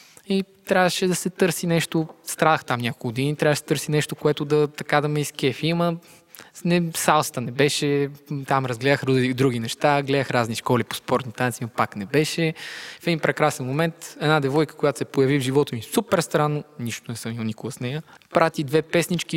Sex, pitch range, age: male, 130-160 Hz, 20-39